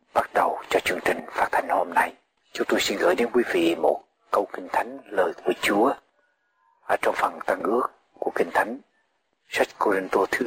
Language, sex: Vietnamese, male